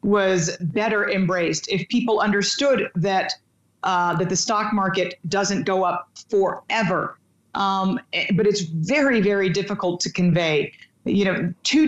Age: 40-59